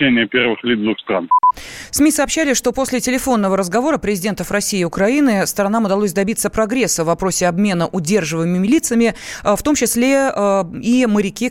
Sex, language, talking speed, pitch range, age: female, Russian, 125 wpm, 180-235 Hz, 20-39